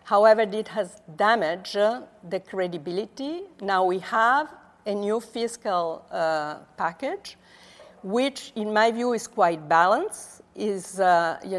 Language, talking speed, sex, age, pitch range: English, 120 wpm, female, 50-69, 180-230 Hz